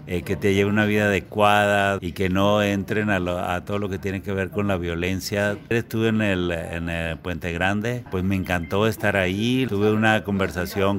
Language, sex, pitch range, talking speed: Spanish, male, 90-105 Hz, 210 wpm